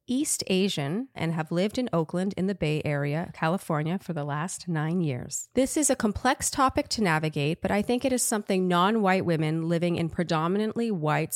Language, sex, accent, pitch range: English, female, American, 160-210 Hz